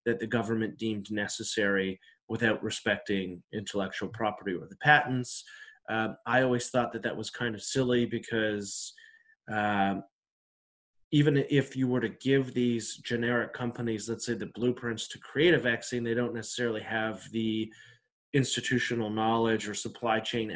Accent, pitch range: American, 110-125 Hz